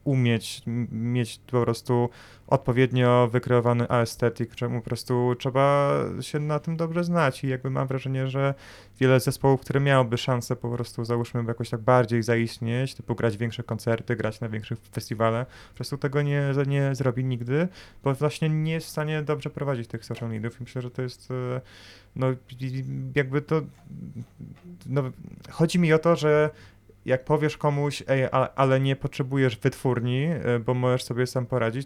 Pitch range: 120-145 Hz